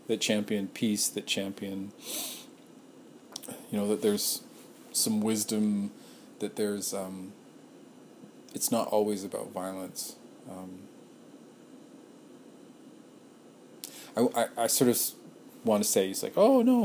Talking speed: 115 wpm